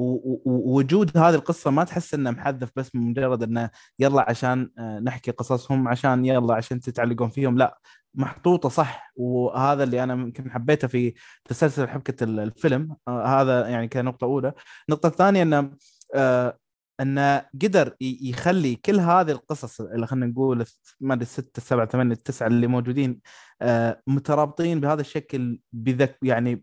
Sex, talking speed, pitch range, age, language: male, 130 wpm, 125-155 Hz, 20-39, Arabic